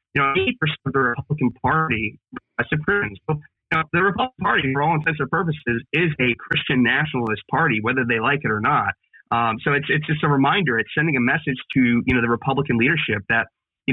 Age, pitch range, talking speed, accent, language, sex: 30-49, 120-150 Hz, 220 wpm, American, English, male